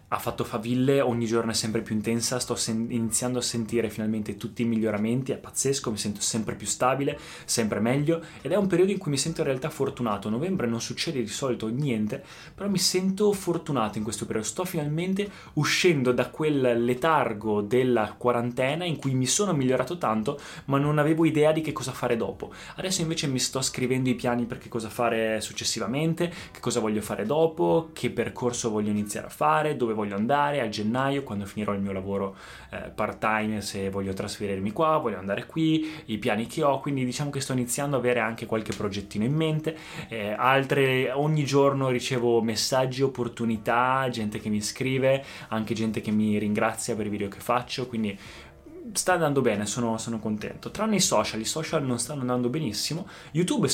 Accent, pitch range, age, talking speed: native, 110-145 Hz, 20-39, 190 wpm